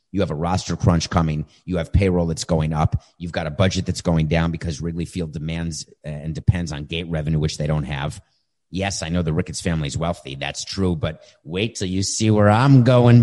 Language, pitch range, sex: English, 85-120 Hz, male